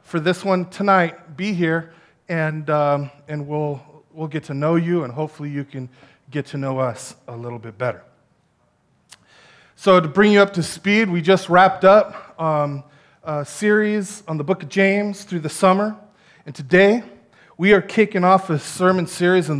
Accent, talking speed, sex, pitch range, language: American, 180 wpm, male, 145-190 Hz, English